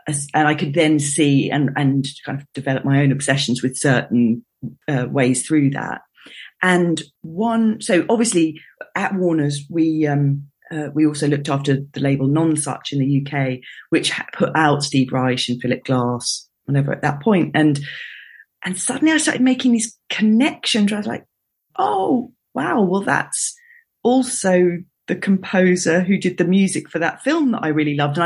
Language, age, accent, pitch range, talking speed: English, 40-59, British, 140-190 Hz, 175 wpm